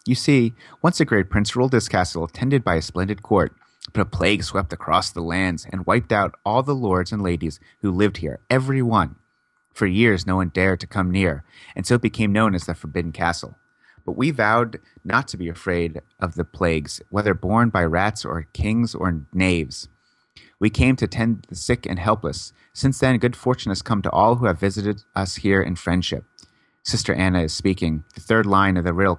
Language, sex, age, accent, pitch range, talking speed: English, male, 30-49, American, 90-120 Hz, 210 wpm